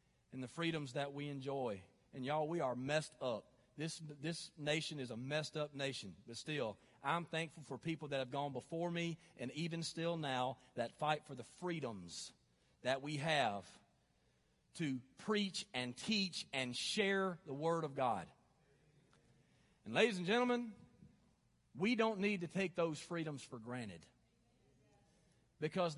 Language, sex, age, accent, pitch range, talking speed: English, male, 40-59, American, 145-220 Hz, 155 wpm